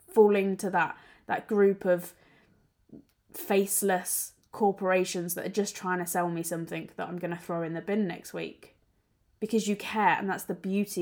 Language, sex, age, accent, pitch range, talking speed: English, female, 20-39, British, 175-245 Hz, 180 wpm